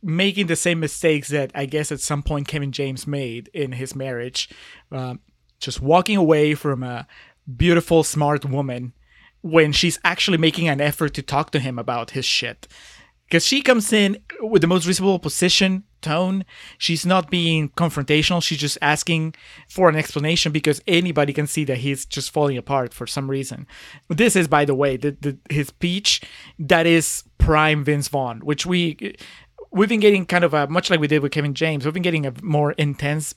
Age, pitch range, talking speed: 30-49, 140-165 Hz, 185 wpm